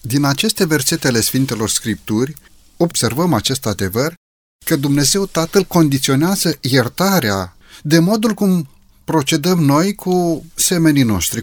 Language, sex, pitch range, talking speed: Romanian, male, 120-170 Hz, 110 wpm